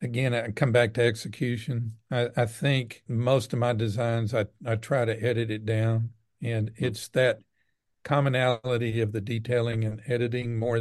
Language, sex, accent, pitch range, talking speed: English, male, American, 115-130 Hz, 165 wpm